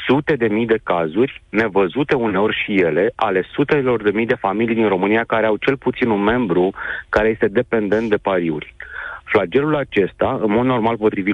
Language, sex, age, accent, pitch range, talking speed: Romanian, male, 40-59, native, 110-140 Hz, 180 wpm